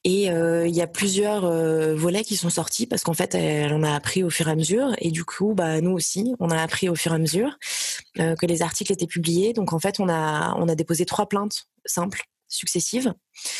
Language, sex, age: French, female, 20-39